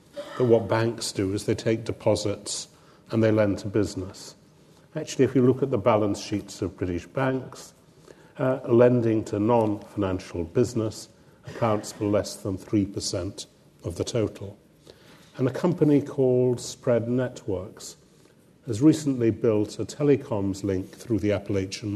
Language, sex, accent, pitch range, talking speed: English, male, British, 100-125 Hz, 140 wpm